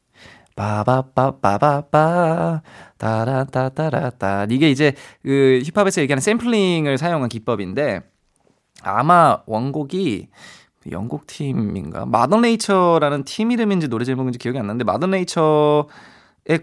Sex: male